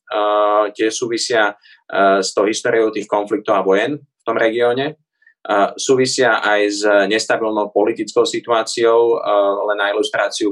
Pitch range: 95-110 Hz